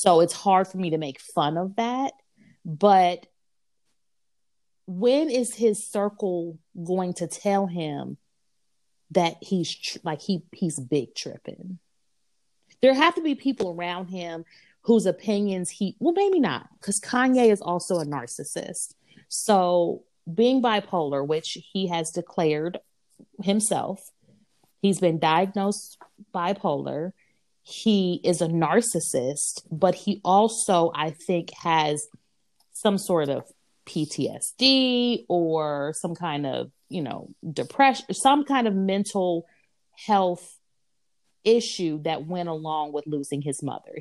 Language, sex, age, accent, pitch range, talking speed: English, female, 30-49, American, 155-200 Hz, 125 wpm